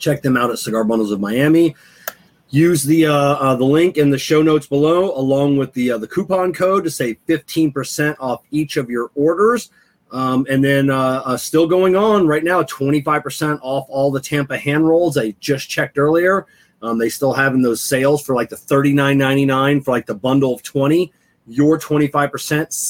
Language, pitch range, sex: English, 115-150 Hz, male